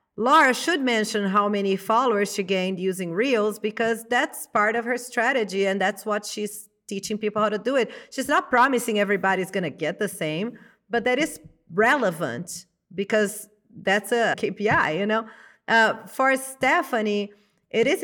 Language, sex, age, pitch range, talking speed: English, female, 40-59, 185-240 Hz, 165 wpm